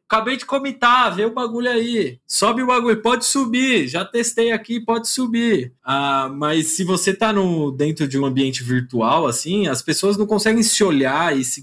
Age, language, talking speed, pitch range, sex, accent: 20-39, Portuguese, 190 wpm, 130-185 Hz, male, Brazilian